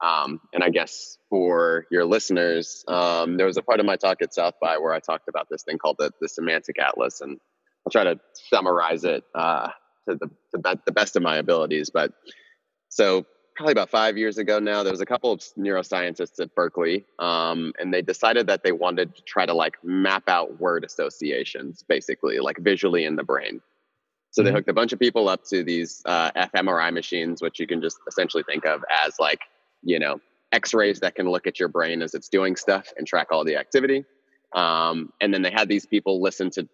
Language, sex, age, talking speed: English, male, 20-39, 210 wpm